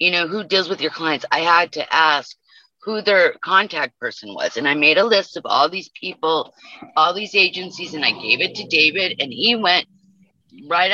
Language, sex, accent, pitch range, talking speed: English, female, American, 155-210 Hz, 205 wpm